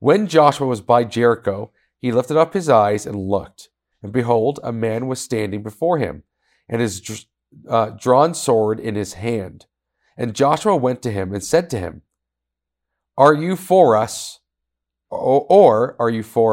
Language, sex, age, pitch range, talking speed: English, male, 40-59, 100-125 Hz, 165 wpm